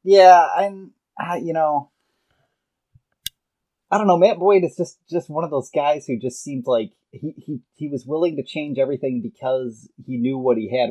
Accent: American